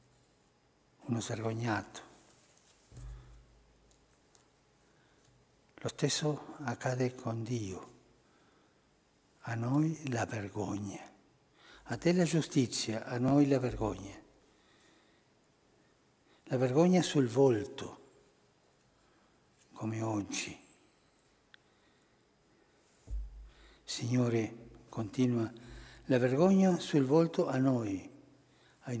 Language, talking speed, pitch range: Italian, 70 wpm, 115-150 Hz